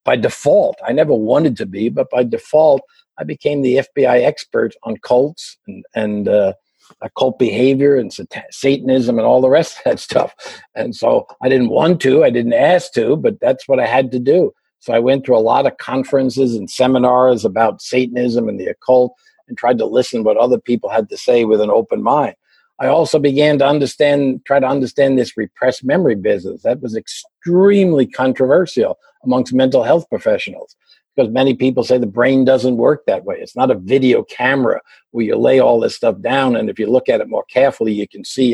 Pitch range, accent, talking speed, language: 125-200 Hz, American, 205 wpm, English